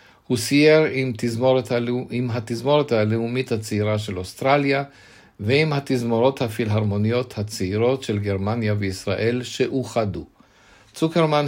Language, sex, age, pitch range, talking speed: Hebrew, male, 50-69, 105-130 Hz, 100 wpm